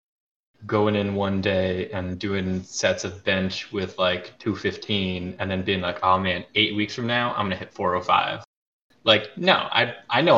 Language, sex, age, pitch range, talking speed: English, male, 20-39, 95-110 Hz, 185 wpm